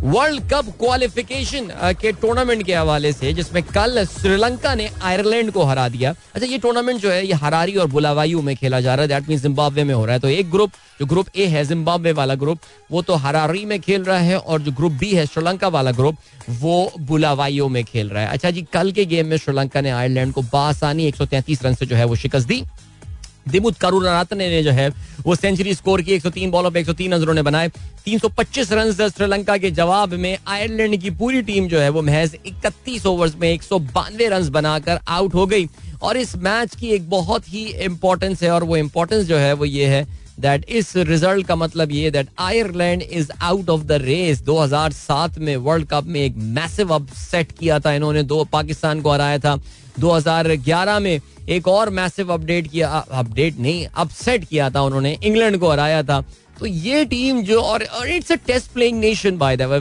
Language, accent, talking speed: Hindi, native, 200 wpm